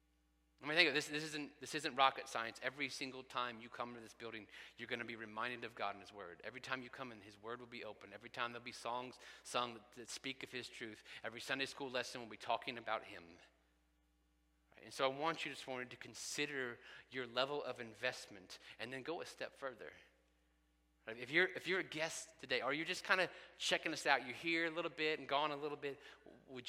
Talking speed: 240 wpm